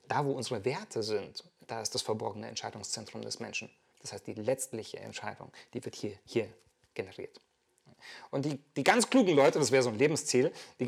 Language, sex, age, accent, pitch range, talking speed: German, male, 30-49, German, 120-145 Hz, 190 wpm